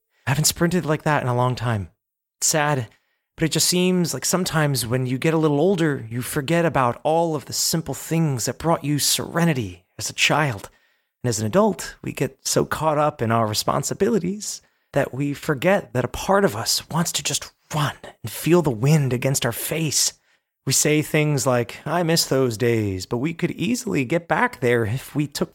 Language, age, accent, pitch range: English, 30-49, American, 125-165 Hz